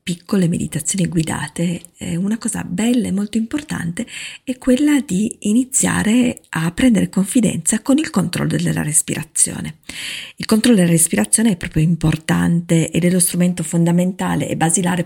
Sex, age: female, 40-59